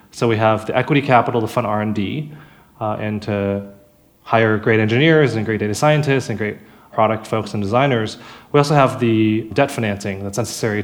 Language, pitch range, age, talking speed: English, 105-125 Hz, 20-39, 175 wpm